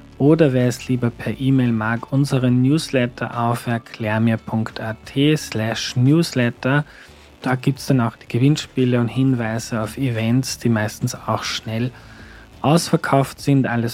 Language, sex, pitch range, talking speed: German, male, 115-135 Hz, 135 wpm